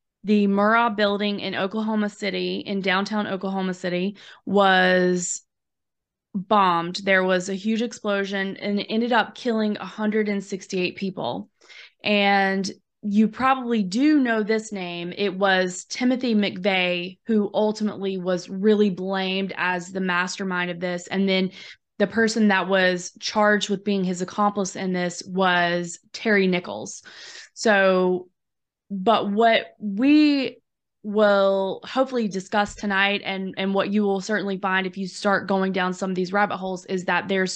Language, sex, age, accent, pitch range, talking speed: English, female, 20-39, American, 185-210 Hz, 140 wpm